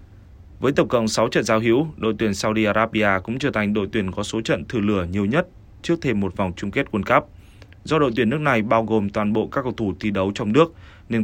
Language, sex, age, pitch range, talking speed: Vietnamese, male, 20-39, 100-120 Hz, 255 wpm